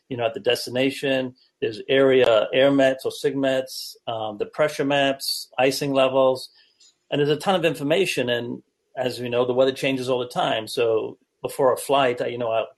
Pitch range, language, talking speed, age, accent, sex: 125-195 Hz, English, 185 wpm, 40-59, American, male